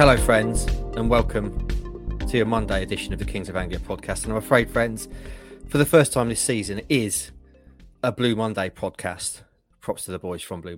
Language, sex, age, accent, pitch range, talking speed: English, male, 30-49, British, 95-125 Hz, 200 wpm